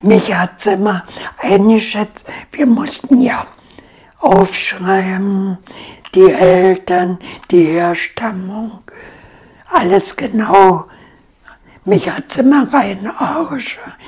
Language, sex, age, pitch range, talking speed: German, male, 60-79, 195-270 Hz, 80 wpm